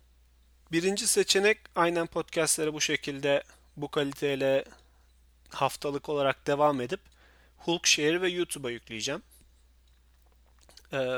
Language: Turkish